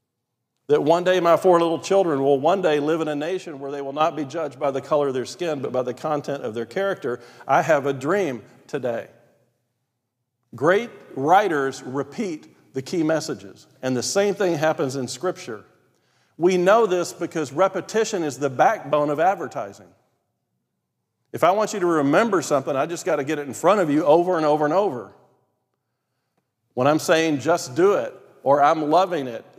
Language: English